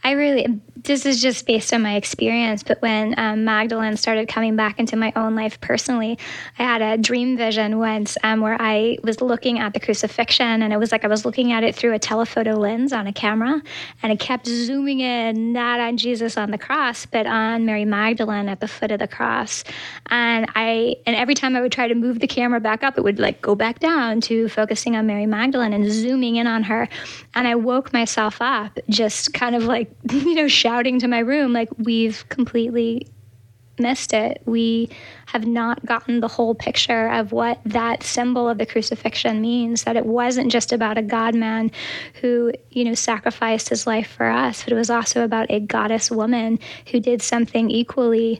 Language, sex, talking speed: English, female, 205 wpm